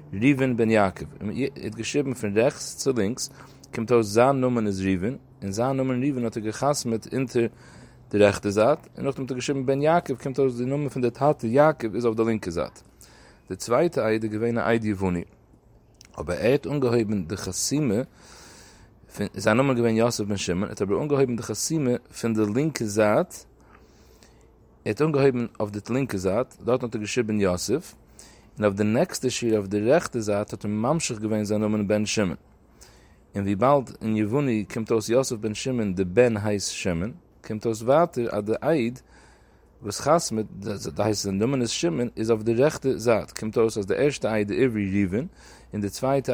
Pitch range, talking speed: 105-125 Hz, 135 wpm